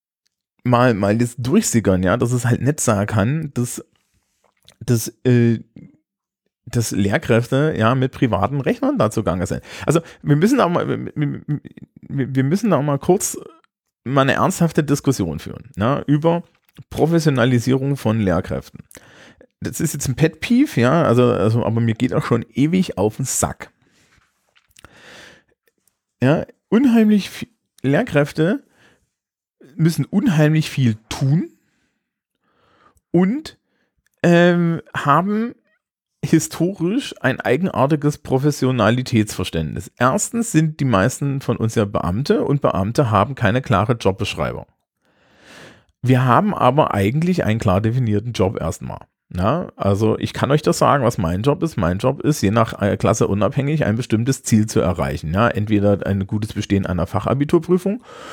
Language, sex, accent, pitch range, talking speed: German, male, German, 105-150 Hz, 130 wpm